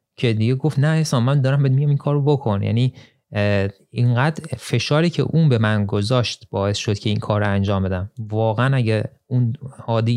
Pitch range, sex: 105-135 Hz, male